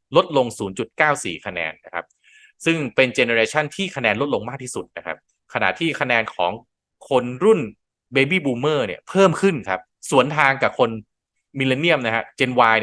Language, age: Thai, 20-39